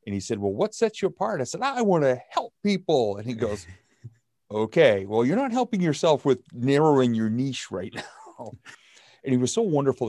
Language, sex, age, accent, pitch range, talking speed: English, male, 40-59, American, 95-130 Hz, 210 wpm